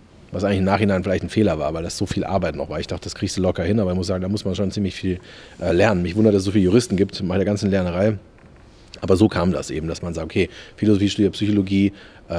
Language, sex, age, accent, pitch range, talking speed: German, male, 30-49, German, 100-125 Hz, 275 wpm